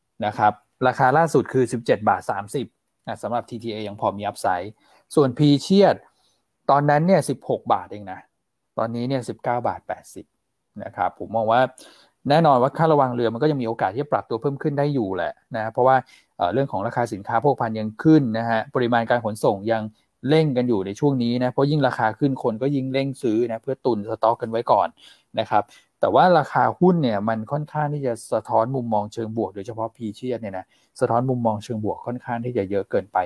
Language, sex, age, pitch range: Thai, male, 20-39, 110-135 Hz